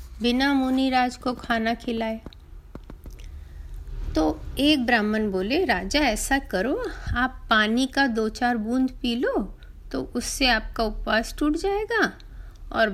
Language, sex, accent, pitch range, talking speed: Hindi, female, native, 205-275 Hz, 125 wpm